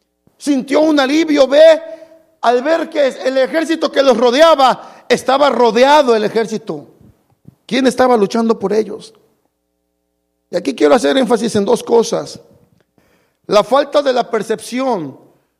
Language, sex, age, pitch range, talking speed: Spanish, male, 50-69, 200-280 Hz, 130 wpm